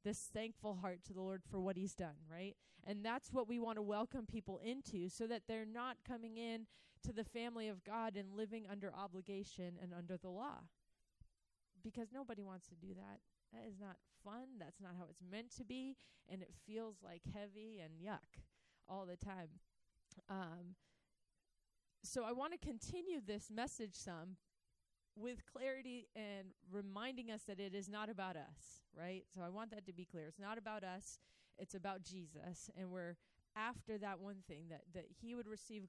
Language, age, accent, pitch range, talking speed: English, 30-49, American, 185-220 Hz, 185 wpm